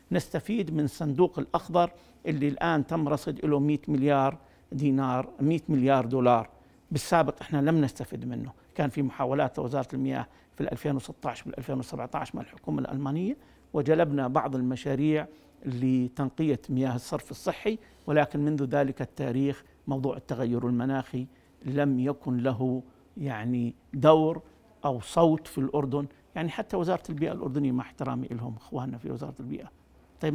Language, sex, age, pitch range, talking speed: Arabic, male, 50-69, 140-200 Hz, 135 wpm